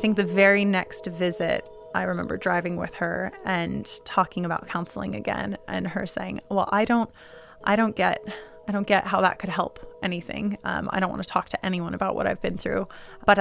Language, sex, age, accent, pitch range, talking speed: English, female, 20-39, American, 180-205 Hz, 210 wpm